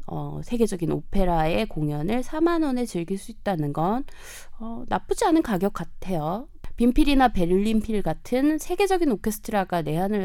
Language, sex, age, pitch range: Korean, female, 20-39, 165-260 Hz